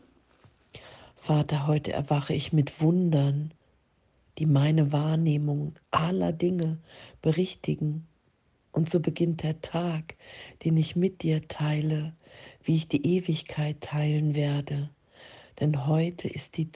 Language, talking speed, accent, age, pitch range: German, 115 wpm, German, 40-59, 150-165 Hz